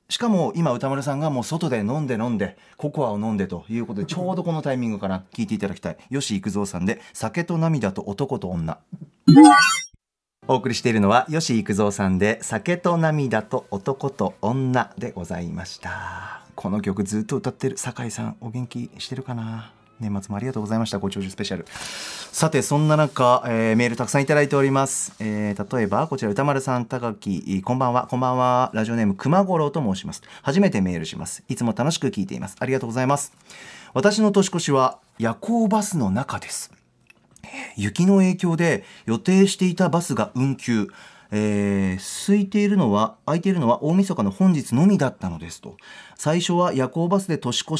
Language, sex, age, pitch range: Japanese, male, 30-49, 110-165 Hz